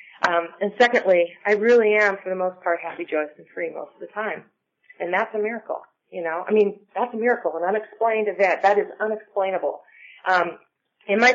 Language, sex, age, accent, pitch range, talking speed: English, female, 30-49, American, 175-215 Hz, 200 wpm